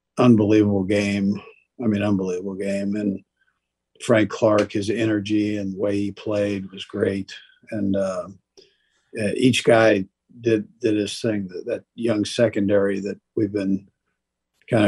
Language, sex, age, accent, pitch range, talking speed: English, male, 50-69, American, 100-110 Hz, 135 wpm